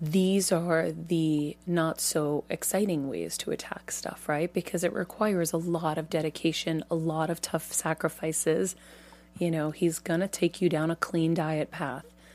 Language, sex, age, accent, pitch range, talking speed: English, female, 30-49, American, 160-195 Hz, 165 wpm